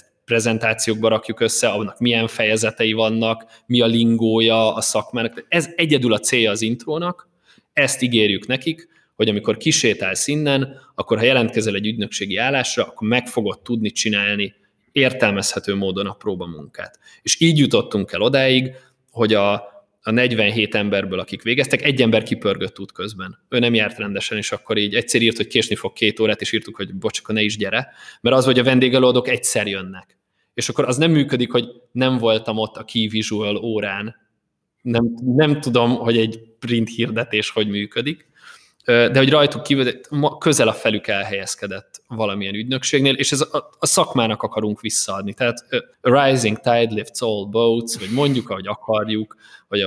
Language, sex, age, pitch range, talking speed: Hungarian, male, 20-39, 105-125 Hz, 160 wpm